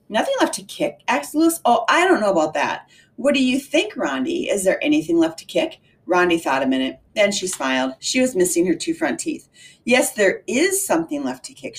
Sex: female